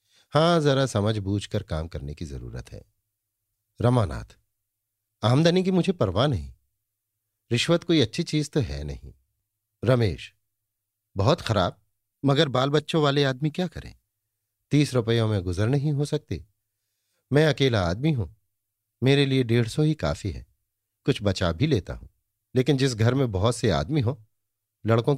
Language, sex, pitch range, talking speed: Hindi, male, 105-135 Hz, 155 wpm